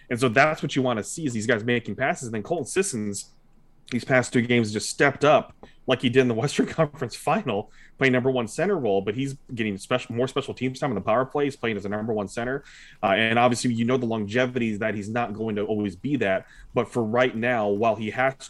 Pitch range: 105-130 Hz